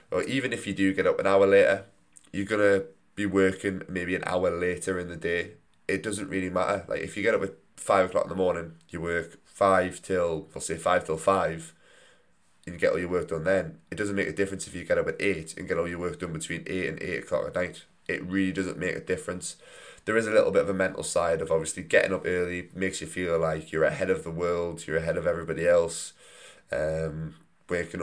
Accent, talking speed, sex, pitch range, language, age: British, 240 wpm, male, 85-100 Hz, English, 20-39